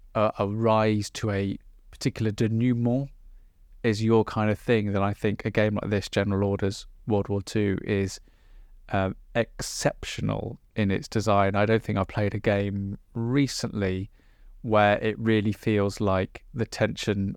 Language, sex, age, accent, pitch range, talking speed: English, male, 20-39, British, 100-110 Hz, 150 wpm